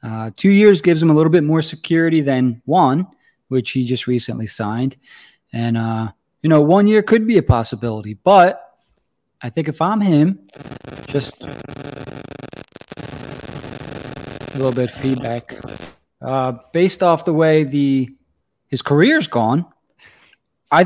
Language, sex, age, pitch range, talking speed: English, male, 20-39, 120-160 Hz, 140 wpm